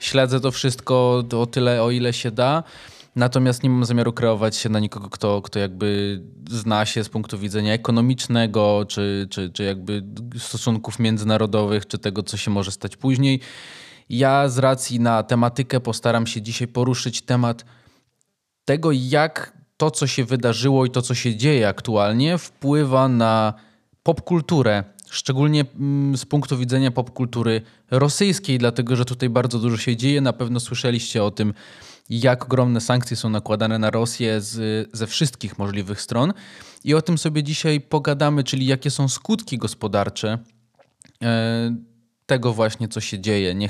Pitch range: 110-130 Hz